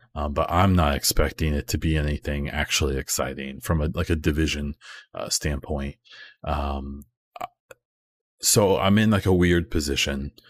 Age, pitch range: 30-49, 75-95 Hz